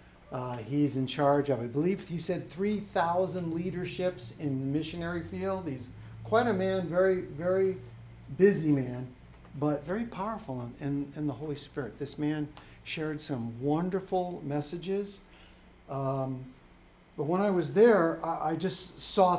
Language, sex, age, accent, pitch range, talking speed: English, male, 60-79, American, 130-170 Hz, 145 wpm